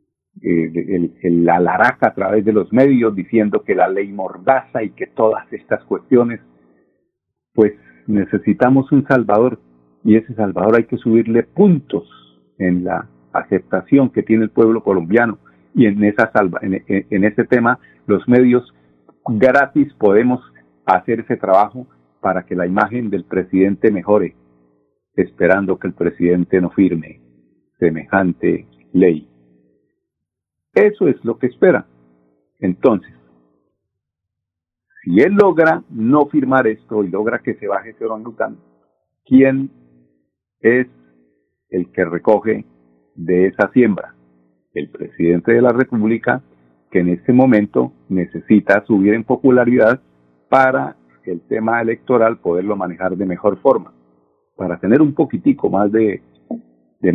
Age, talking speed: 50-69, 130 wpm